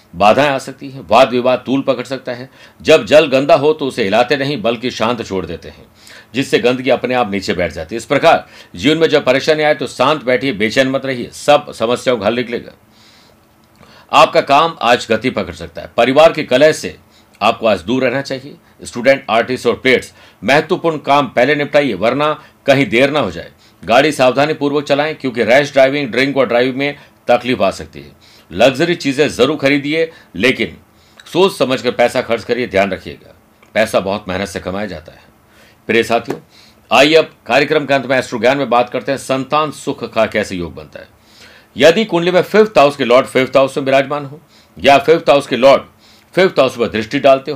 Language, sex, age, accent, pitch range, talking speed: Hindi, male, 60-79, native, 120-145 Hz, 195 wpm